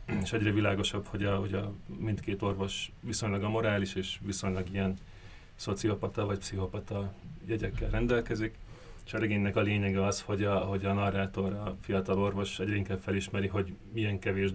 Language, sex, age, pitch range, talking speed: Hungarian, male, 30-49, 95-105 Hz, 160 wpm